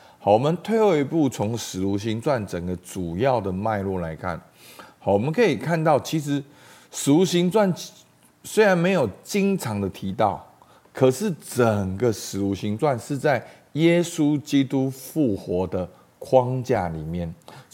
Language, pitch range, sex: Chinese, 95-140 Hz, male